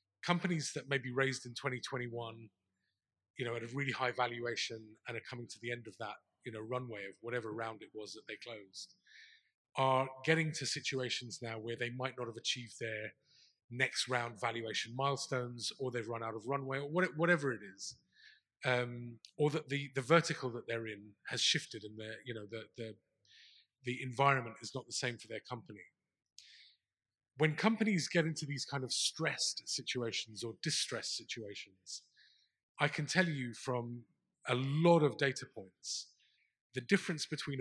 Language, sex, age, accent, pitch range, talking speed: English, male, 30-49, British, 115-140 Hz, 175 wpm